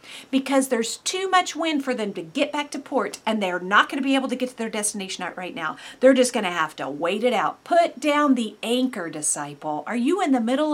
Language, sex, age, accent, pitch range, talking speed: English, female, 50-69, American, 190-265 Hz, 250 wpm